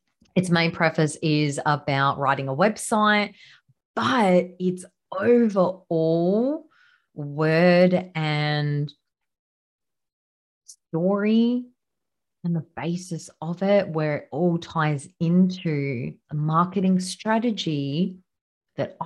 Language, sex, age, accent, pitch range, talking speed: English, female, 30-49, Australian, 145-200 Hz, 90 wpm